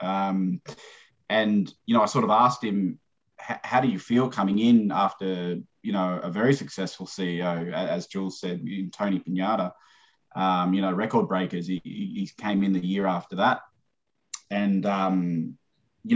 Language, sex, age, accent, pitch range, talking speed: English, male, 20-39, Australian, 95-115 Hz, 160 wpm